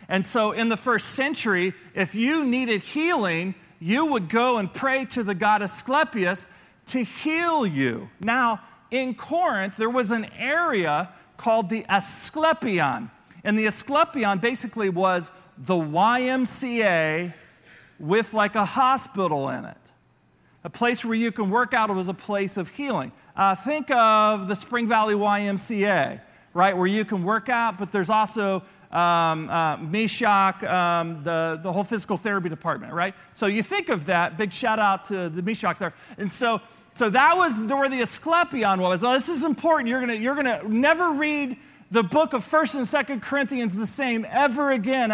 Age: 40-59